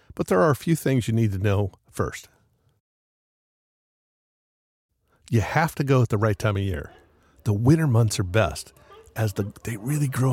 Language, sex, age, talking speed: English, male, 50-69, 175 wpm